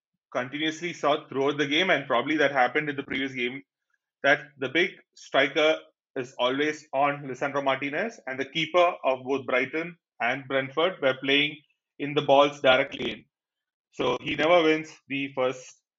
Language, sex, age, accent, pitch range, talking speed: English, male, 30-49, Indian, 130-155 Hz, 160 wpm